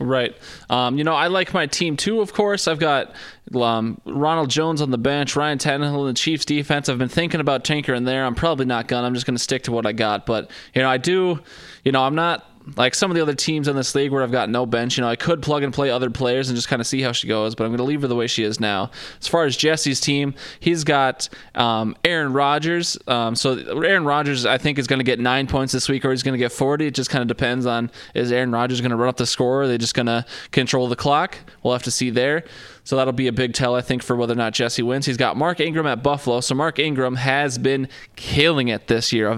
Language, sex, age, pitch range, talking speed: English, male, 20-39, 125-150 Hz, 275 wpm